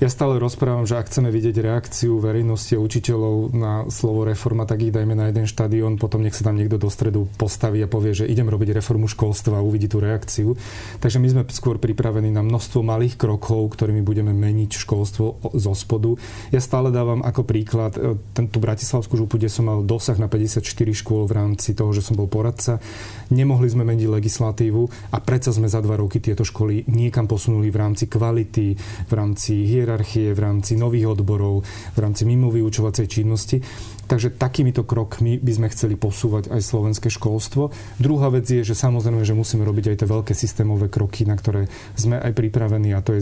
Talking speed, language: 190 wpm, Slovak